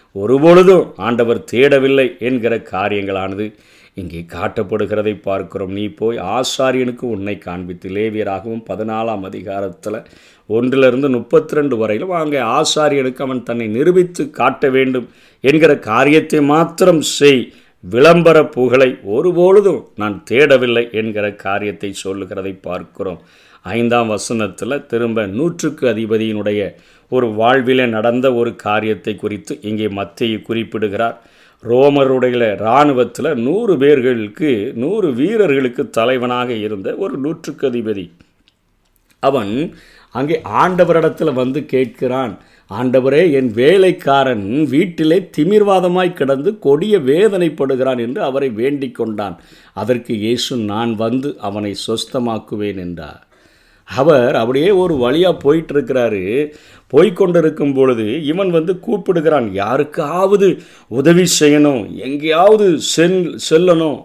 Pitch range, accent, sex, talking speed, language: 110-150 Hz, native, male, 95 wpm, Tamil